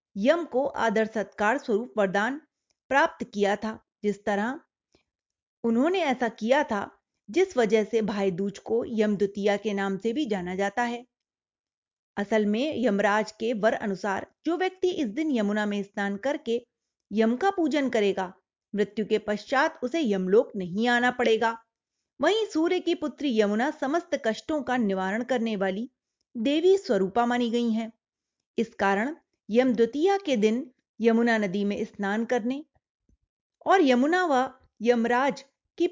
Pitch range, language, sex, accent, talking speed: 205-275 Hz, Hindi, female, native, 110 wpm